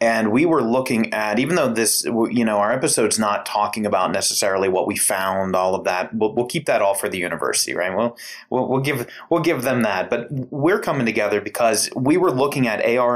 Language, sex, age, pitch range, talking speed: English, male, 30-49, 105-135 Hz, 225 wpm